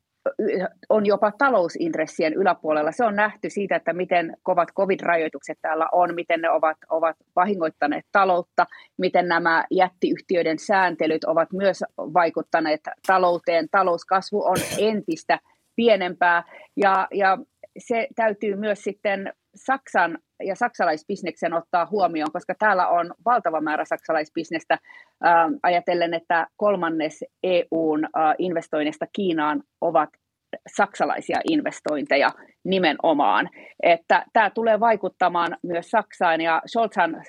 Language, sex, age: Finnish, female, 30-49